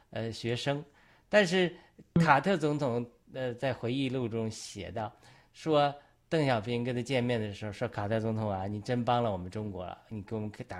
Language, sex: Chinese, male